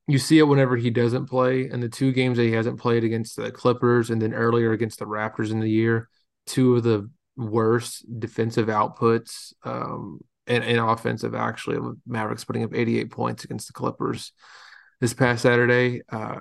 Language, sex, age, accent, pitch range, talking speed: English, male, 20-39, American, 110-125 Hz, 185 wpm